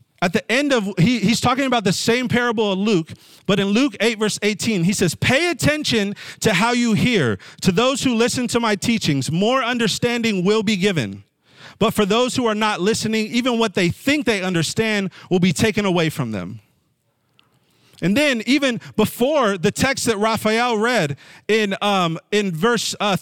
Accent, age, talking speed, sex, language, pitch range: American, 40-59, 185 wpm, male, English, 175-230 Hz